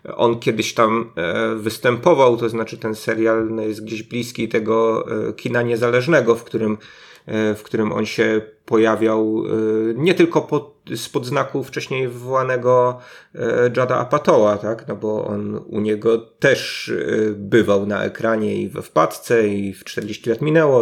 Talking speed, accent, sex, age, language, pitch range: 135 wpm, native, male, 30-49, Polish, 110-140 Hz